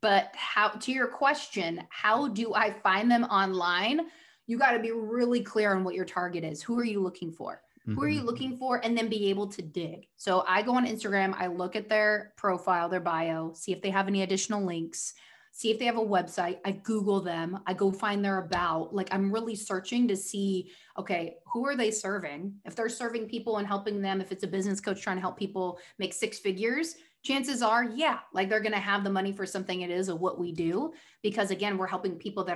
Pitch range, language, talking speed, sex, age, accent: 185-225 Hz, English, 230 wpm, female, 20-39, American